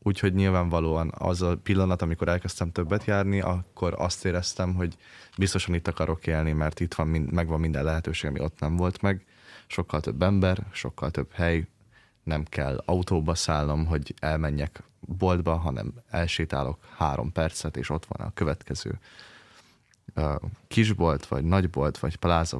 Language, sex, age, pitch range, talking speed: Hungarian, male, 20-39, 80-95 Hz, 145 wpm